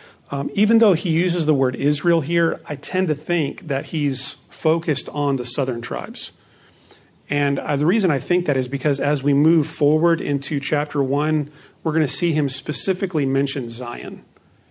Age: 40-59